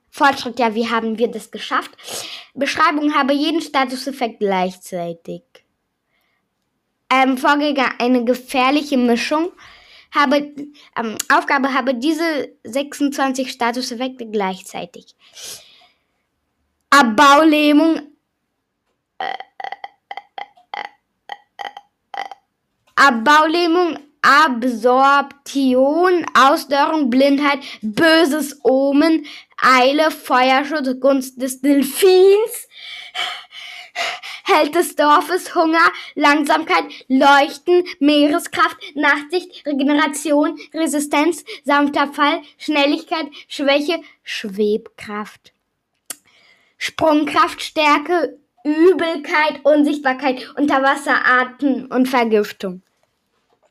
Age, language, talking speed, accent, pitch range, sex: 10-29, German, 75 wpm, German, 255-320 Hz, female